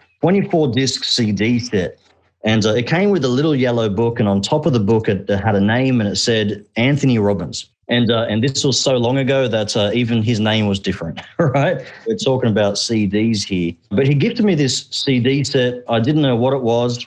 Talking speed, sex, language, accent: 215 wpm, male, English, Australian